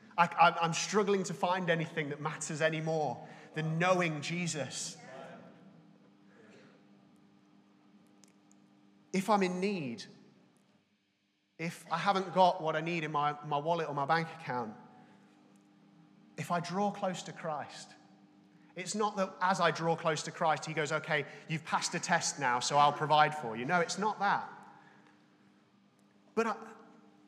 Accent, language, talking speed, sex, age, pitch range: British, English, 140 wpm, male, 30-49, 135-200 Hz